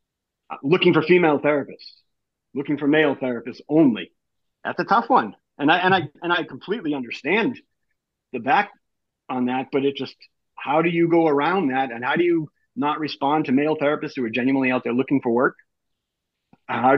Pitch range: 145-190 Hz